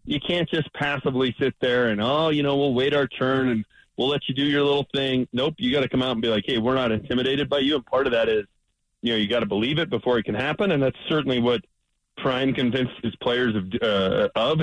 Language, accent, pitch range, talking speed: English, American, 115-145 Hz, 265 wpm